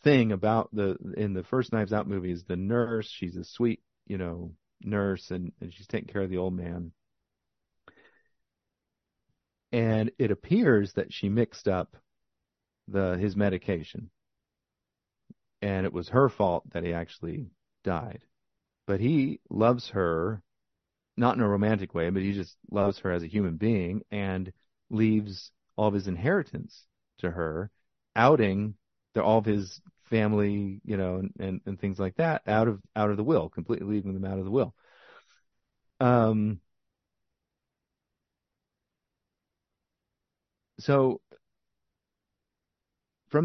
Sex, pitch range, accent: male, 90-110 Hz, American